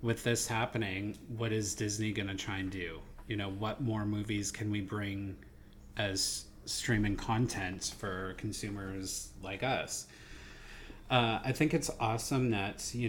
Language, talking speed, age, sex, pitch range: English, 150 wpm, 30-49, male, 100-115 Hz